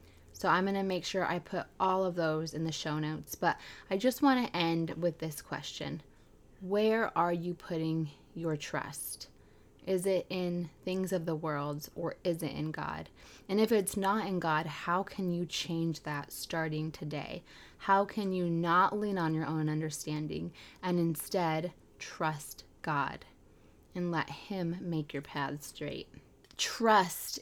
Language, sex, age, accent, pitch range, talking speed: English, female, 20-39, American, 155-180 Hz, 165 wpm